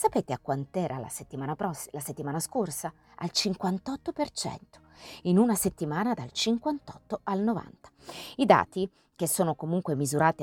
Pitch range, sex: 145-185 Hz, female